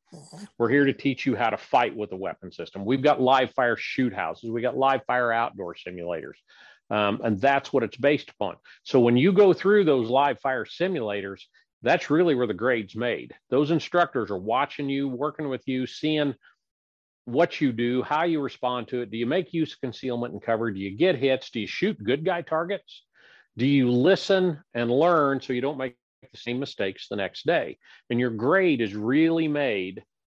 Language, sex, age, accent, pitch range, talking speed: English, male, 50-69, American, 115-145 Hz, 200 wpm